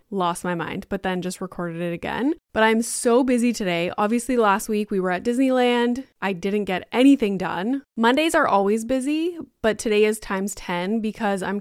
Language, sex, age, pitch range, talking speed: English, female, 20-39, 195-240 Hz, 190 wpm